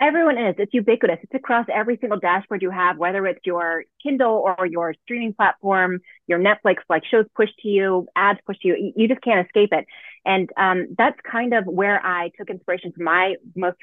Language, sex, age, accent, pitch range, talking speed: English, female, 30-49, American, 175-215 Hz, 205 wpm